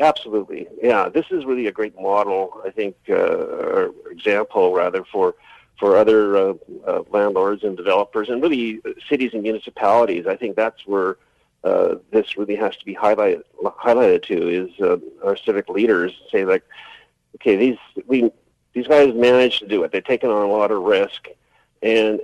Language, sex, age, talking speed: English, male, 50-69, 175 wpm